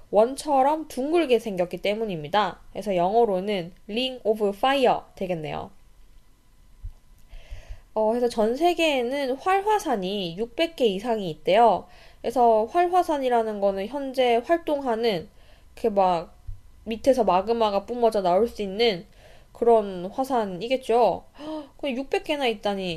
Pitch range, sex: 200-270 Hz, female